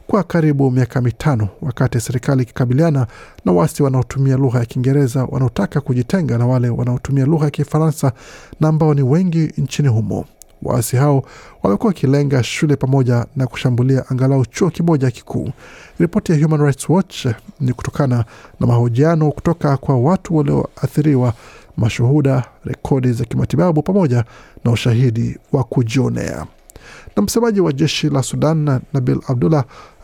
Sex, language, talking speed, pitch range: male, Swahili, 135 wpm, 125-150 Hz